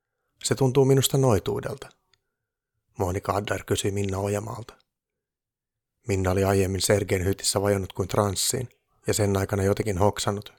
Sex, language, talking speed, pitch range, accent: male, Finnish, 125 wpm, 100-120 Hz, native